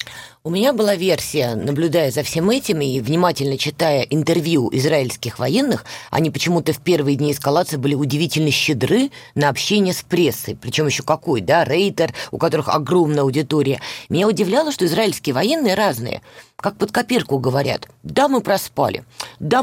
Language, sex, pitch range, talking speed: Russian, female, 150-195 Hz, 155 wpm